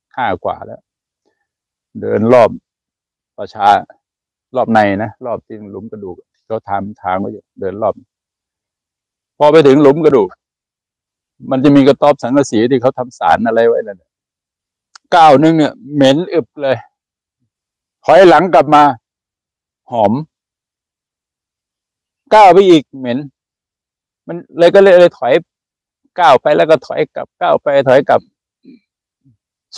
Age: 60-79